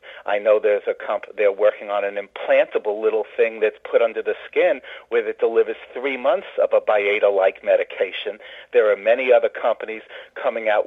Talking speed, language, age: 180 wpm, English, 50-69